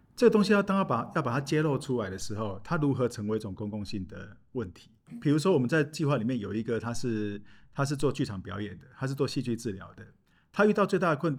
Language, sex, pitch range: Chinese, male, 105-145 Hz